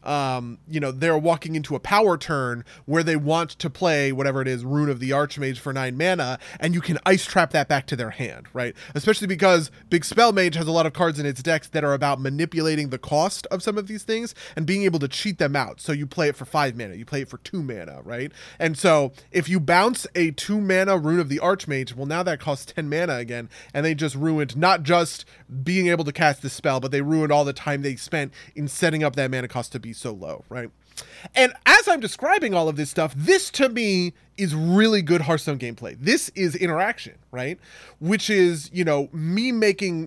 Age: 20-39